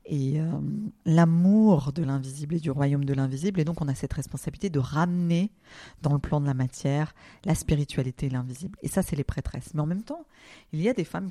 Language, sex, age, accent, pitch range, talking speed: French, female, 40-59, French, 135-165 Hz, 225 wpm